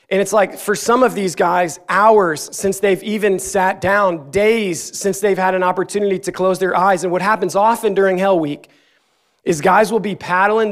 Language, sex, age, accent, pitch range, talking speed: English, male, 30-49, American, 185-210 Hz, 200 wpm